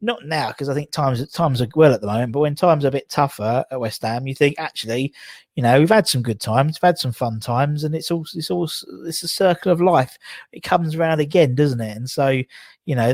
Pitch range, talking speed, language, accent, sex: 120-160 Hz, 260 wpm, English, British, male